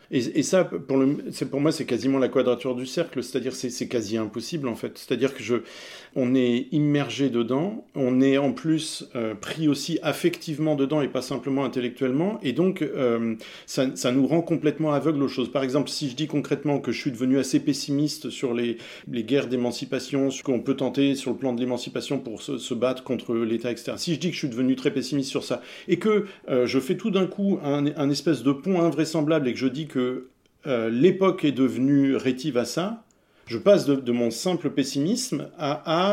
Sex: male